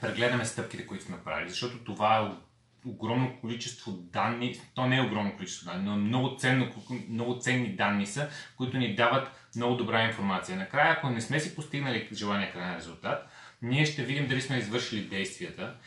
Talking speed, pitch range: 180 wpm, 105-130 Hz